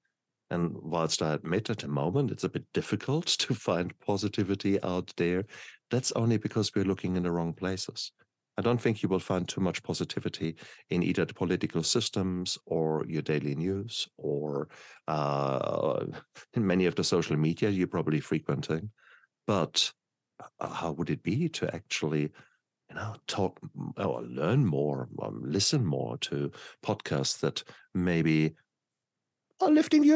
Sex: male